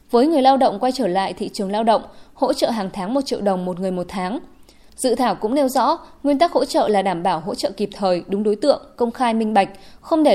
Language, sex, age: Vietnamese, female, 20-39